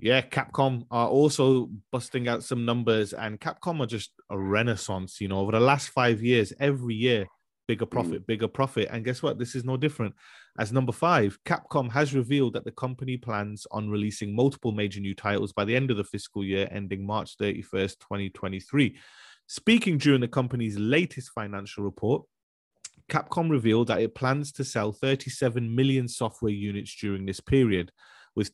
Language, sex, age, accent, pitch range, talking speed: English, male, 30-49, British, 100-130 Hz, 175 wpm